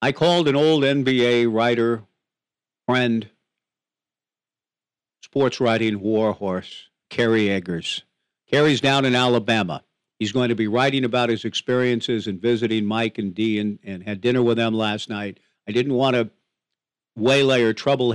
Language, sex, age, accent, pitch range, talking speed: English, male, 50-69, American, 100-130 Hz, 150 wpm